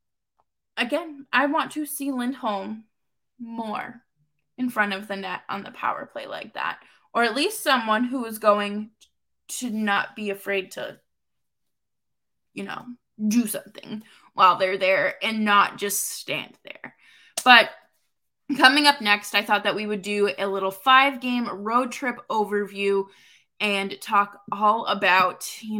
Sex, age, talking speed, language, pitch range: female, 20-39, 150 wpm, English, 205-245 Hz